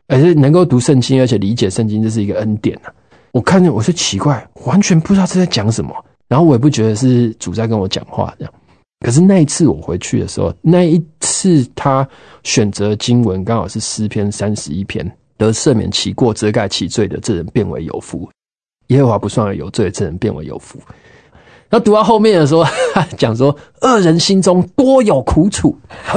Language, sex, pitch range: Chinese, male, 105-155 Hz